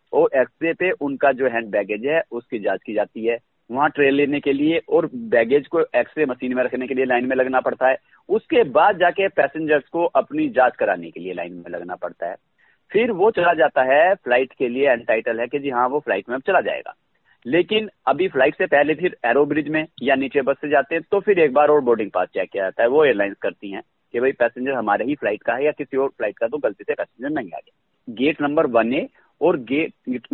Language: Hindi